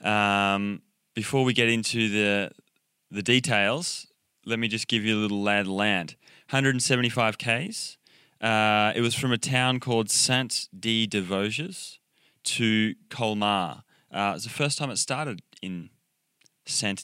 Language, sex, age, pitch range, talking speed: English, male, 20-39, 100-120 Hz, 135 wpm